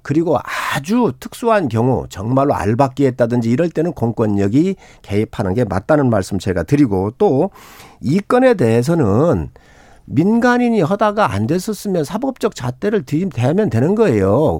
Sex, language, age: male, Korean, 50-69